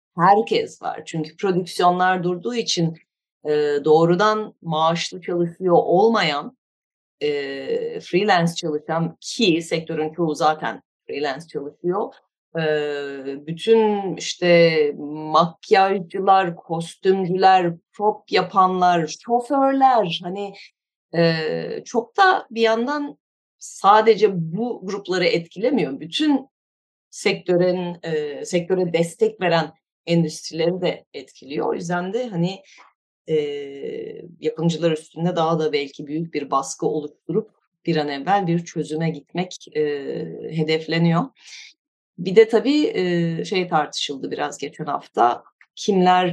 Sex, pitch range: female, 160-200 Hz